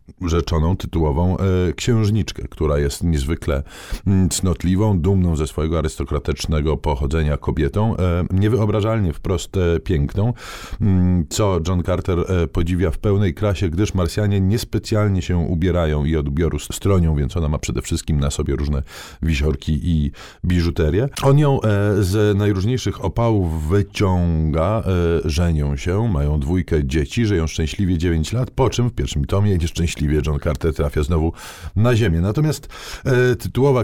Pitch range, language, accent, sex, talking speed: 80-105 Hz, Polish, native, male, 130 wpm